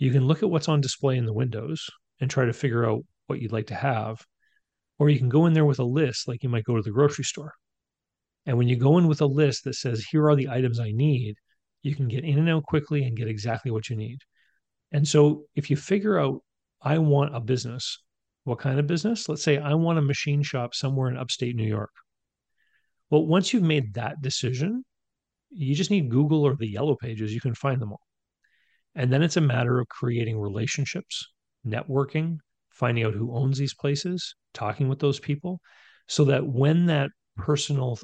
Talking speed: 215 wpm